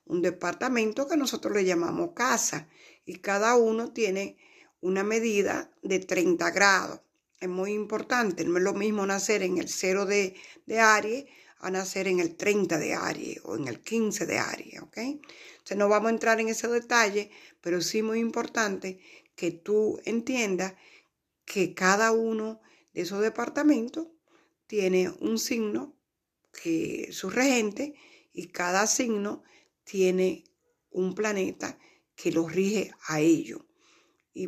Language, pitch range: Spanish, 190-240 Hz